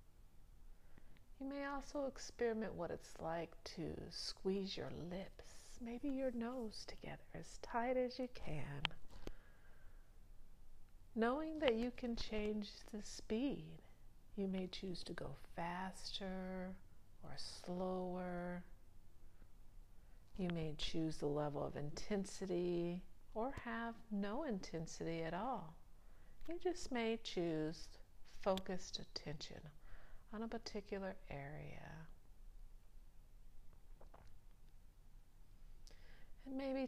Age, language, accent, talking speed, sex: 50-69, English, American, 100 wpm, female